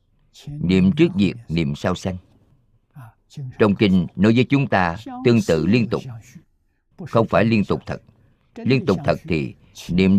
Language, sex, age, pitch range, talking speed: Vietnamese, male, 50-69, 95-125 Hz, 155 wpm